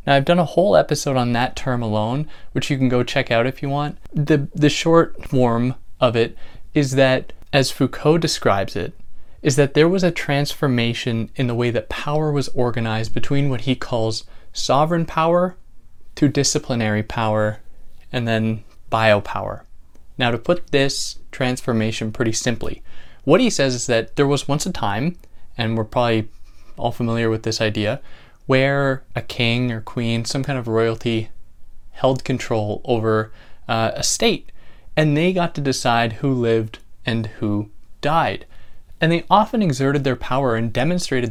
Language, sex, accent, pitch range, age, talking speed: English, male, American, 110-140 Hz, 20-39, 165 wpm